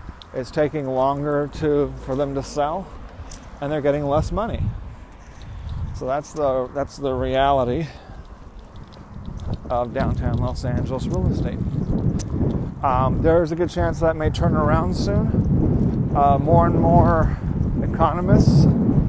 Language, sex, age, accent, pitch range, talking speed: English, male, 40-59, American, 110-145 Hz, 125 wpm